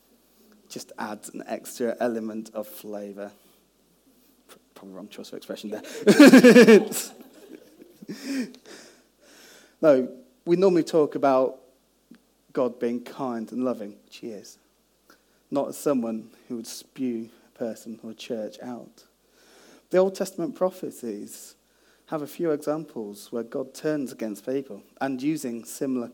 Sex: male